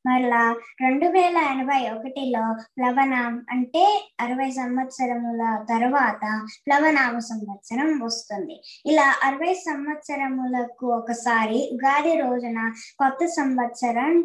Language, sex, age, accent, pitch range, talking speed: Telugu, male, 20-39, native, 235-335 Hz, 90 wpm